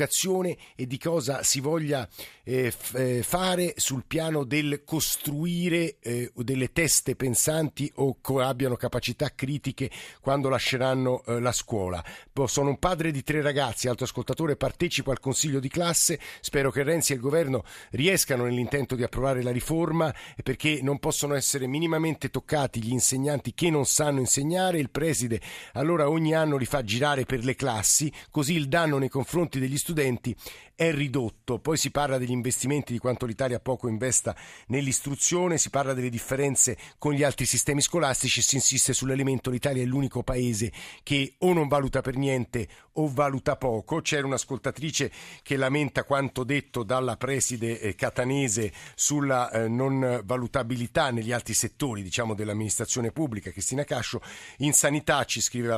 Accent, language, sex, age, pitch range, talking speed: native, Italian, male, 50-69, 125-145 Hz, 150 wpm